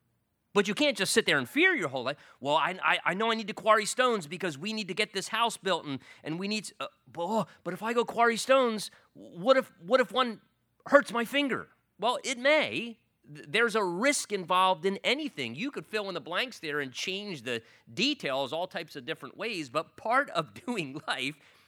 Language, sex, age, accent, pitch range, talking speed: English, male, 30-49, American, 135-210 Hz, 225 wpm